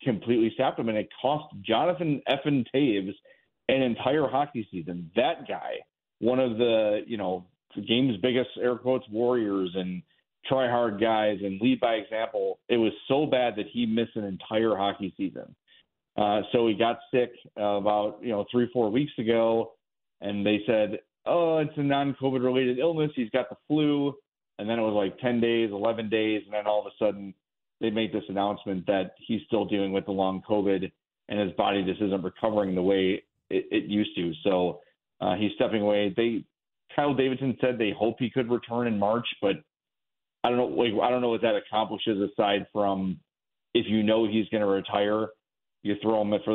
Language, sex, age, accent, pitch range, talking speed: English, male, 40-59, American, 100-125 Hz, 190 wpm